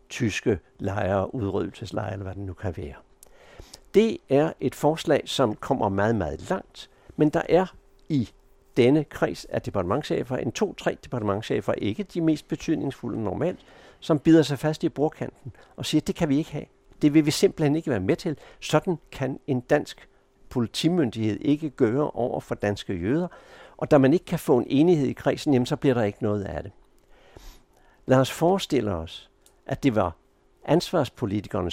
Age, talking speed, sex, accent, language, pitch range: 60-79, 175 wpm, male, native, Danish, 100-150 Hz